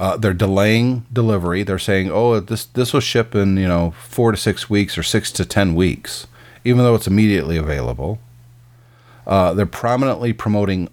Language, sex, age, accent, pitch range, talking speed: English, male, 40-59, American, 95-120 Hz, 175 wpm